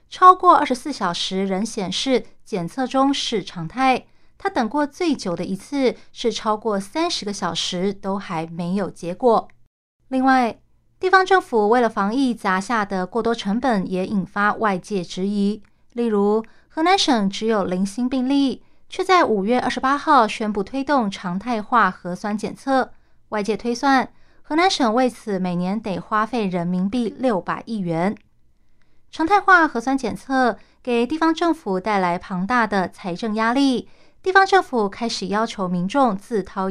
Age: 30-49